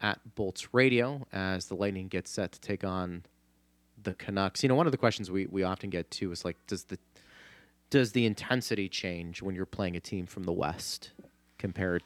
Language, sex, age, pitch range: English, male, 30-49, 95-125 Hz